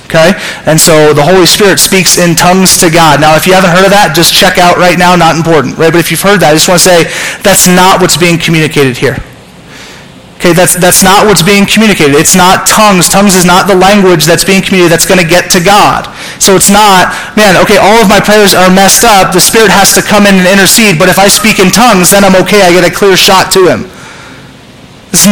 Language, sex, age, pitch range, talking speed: English, male, 30-49, 165-205 Hz, 240 wpm